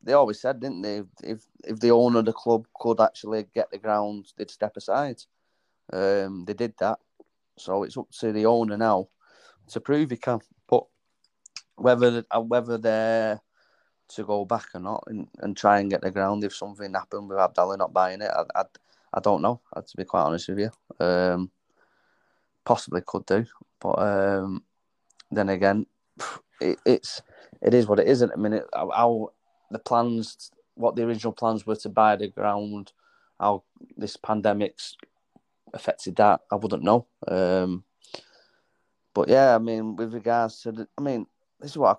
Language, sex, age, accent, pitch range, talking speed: English, male, 20-39, British, 100-120 Hz, 175 wpm